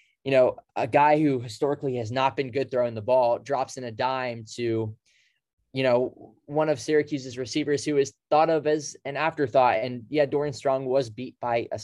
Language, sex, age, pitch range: English, male, 20-39, 110-140 Hz